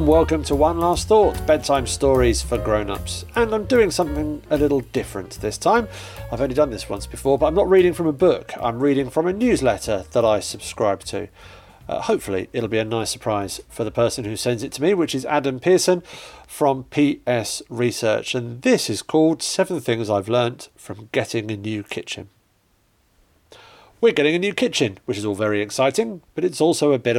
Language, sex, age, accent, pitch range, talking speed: English, male, 40-59, British, 110-160 Hz, 200 wpm